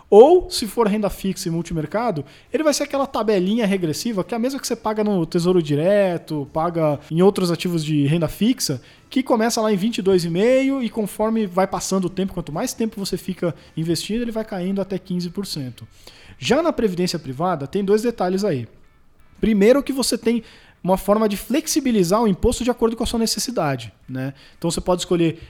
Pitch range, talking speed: 155-215 Hz, 190 wpm